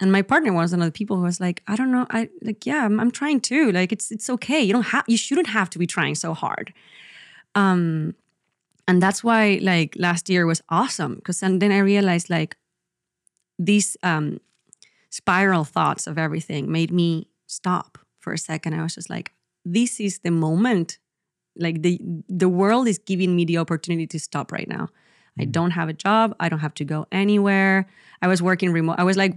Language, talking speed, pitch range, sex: English, 205 wpm, 165-205 Hz, female